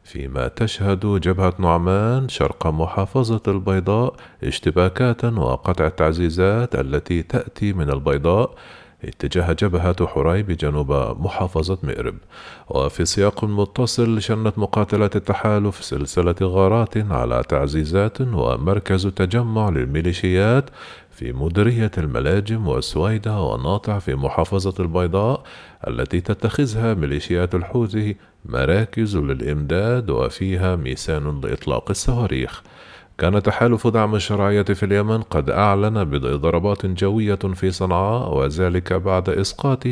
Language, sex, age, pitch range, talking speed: Arabic, male, 40-59, 85-105 Hz, 100 wpm